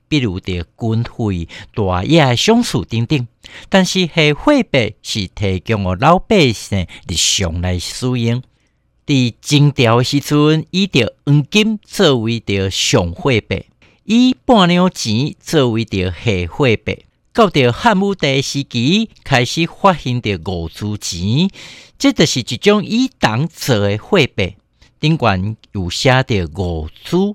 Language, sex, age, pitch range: Chinese, male, 60-79, 105-150 Hz